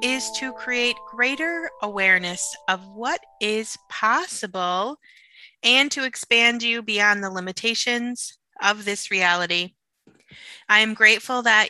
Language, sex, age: English, female, 20-39